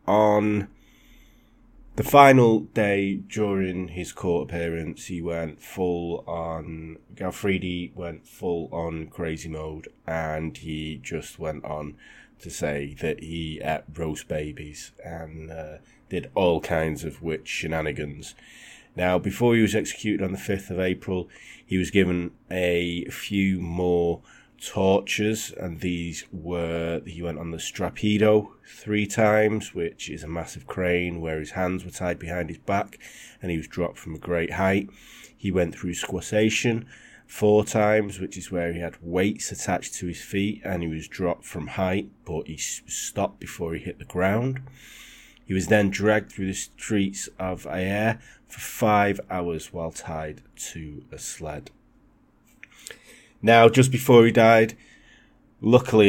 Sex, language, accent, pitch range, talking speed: male, English, British, 85-105 Hz, 150 wpm